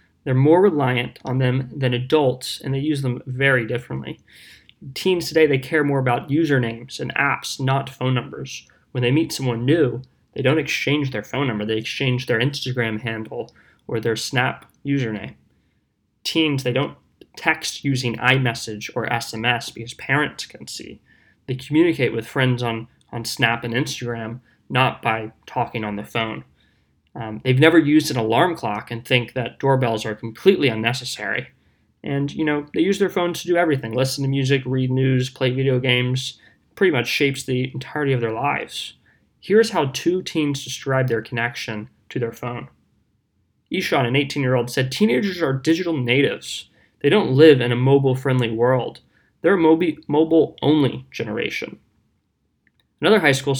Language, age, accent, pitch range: English, 20-39, American, 120-140 Hz